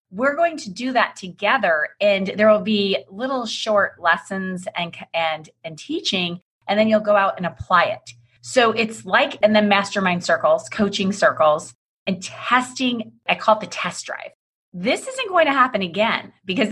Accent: American